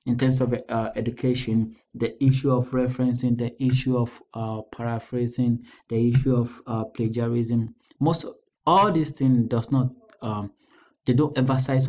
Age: 20-39